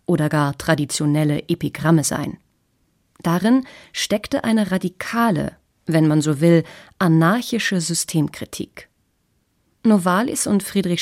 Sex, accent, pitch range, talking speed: female, German, 155-200 Hz, 100 wpm